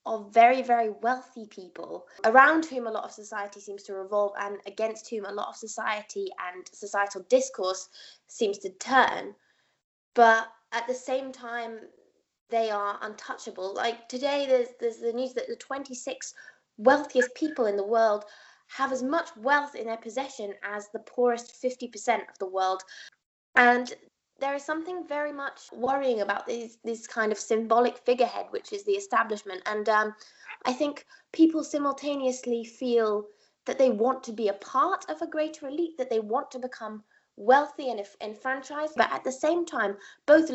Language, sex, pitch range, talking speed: English, female, 210-275 Hz, 165 wpm